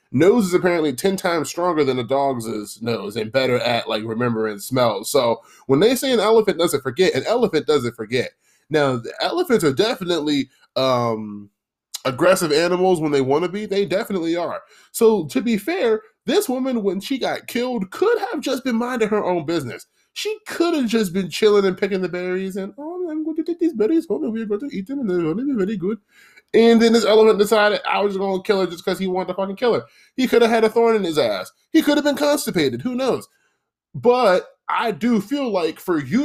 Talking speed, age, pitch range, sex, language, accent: 225 wpm, 20-39, 155-235 Hz, male, English, American